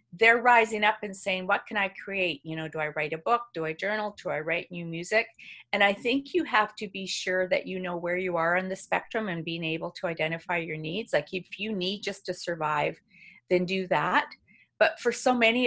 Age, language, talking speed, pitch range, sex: 40-59, English, 240 wpm, 170-200 Hz, female